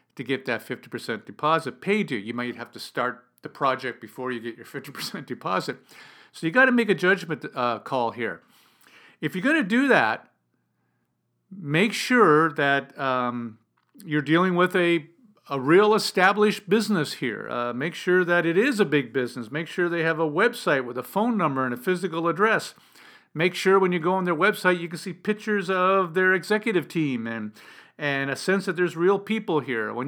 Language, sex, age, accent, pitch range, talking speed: English, male, 50-69, American, 140-190 Hz, 195 wpm